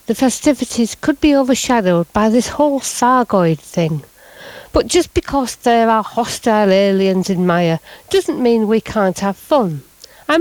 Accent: British